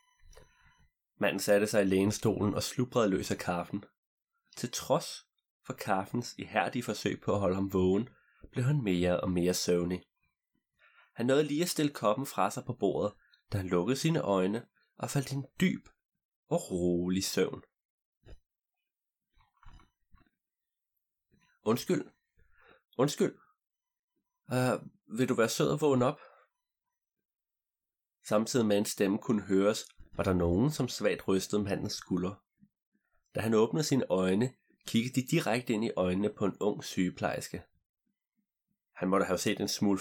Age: 30-49